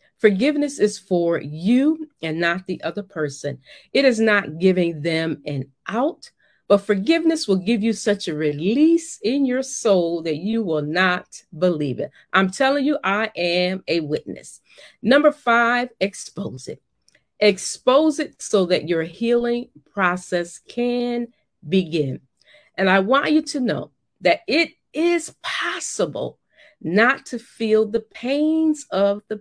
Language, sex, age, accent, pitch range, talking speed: English, female, 40-59, American, 165-245 Hz, 145 wpm